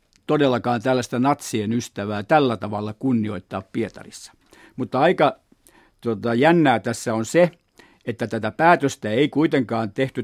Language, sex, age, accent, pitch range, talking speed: Finnish, male, 50-69, native, 115-135 Hz, 125 wpm